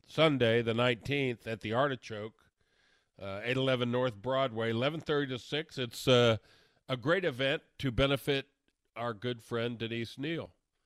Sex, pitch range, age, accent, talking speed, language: male, 105-135 Hz, 50-69, American, 140 wpm, English